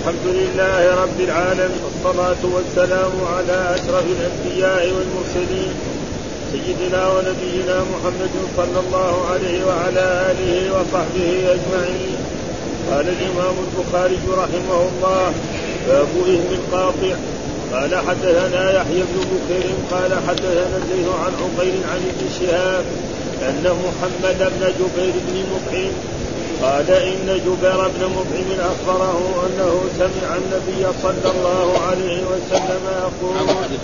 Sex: male